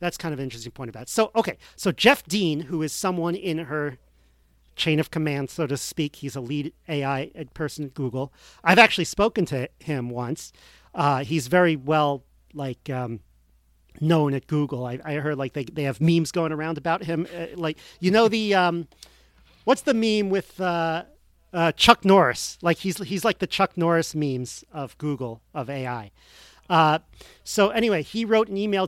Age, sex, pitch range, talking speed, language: 40-59, male, 140-180 Hz, 190 wpm, English